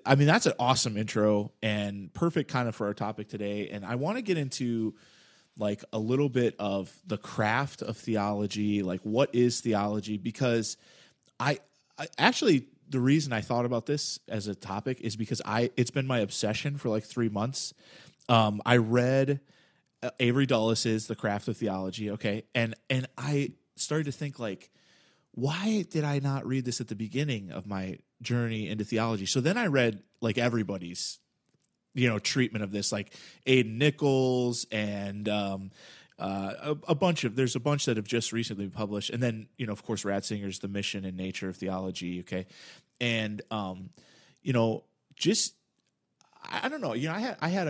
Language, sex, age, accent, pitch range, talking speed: English, male, 30-49, American, 105-135 Hz, 185 wpm